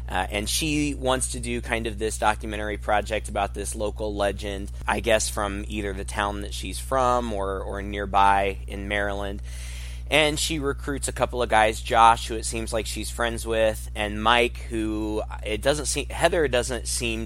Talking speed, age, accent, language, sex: 185 wpm, 20-39, American, English, male